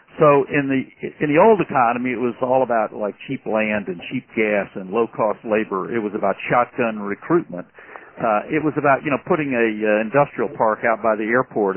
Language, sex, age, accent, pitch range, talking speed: English, male, 50-69, American, 110-135 Hz, 210 wpm